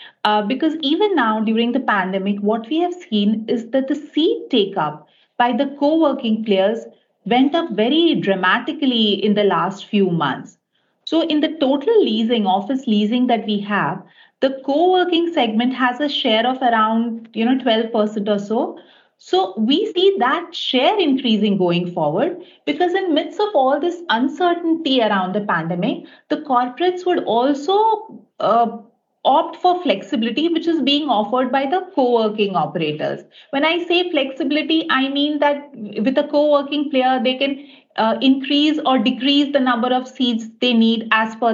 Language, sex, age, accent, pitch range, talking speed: English, female, 40-59, Indian, 215-315 Hz, 165 wpm